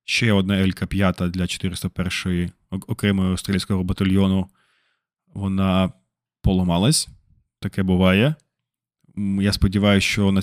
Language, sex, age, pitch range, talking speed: Ukrainian, male, 20-39, 95-105 Hz, 90 wpm